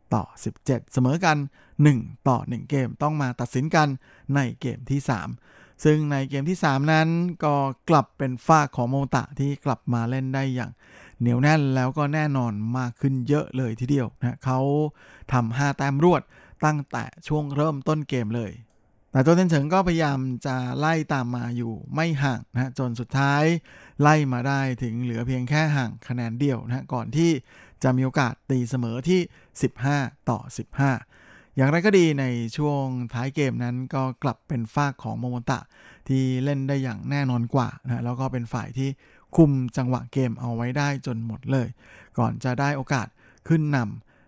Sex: male